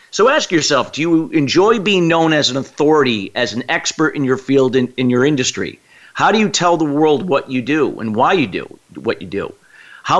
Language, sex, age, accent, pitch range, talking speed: English, male, 40-59, American, 130-160 Hz, 225 wpm